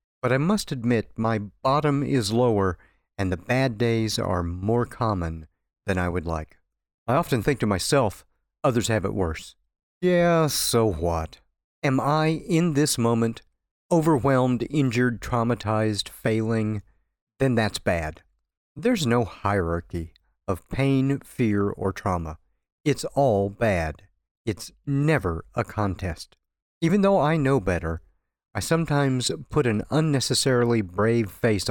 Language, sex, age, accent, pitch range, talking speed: English, male, 50-69, American, 90-135 Hz, 130 wpm